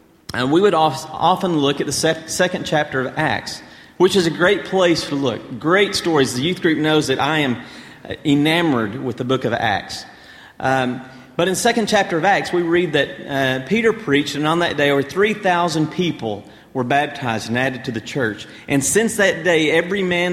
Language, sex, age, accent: English, male, 40-59, American